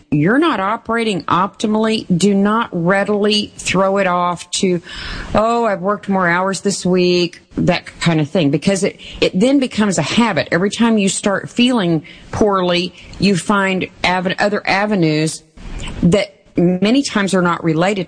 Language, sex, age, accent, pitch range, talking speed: English, female, 40-59, American, 155-195 Hz, 155 wpm